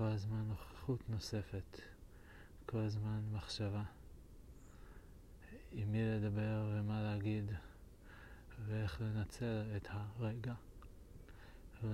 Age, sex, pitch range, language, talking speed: 40-59, male, 95-115 Hz, Hebrew, 85 wpm